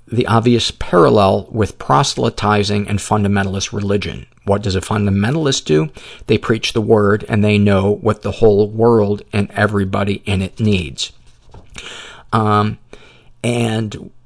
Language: English